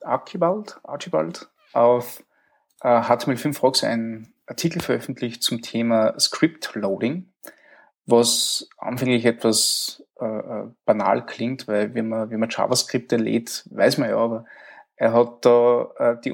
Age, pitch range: 20-39, 115-135 Hz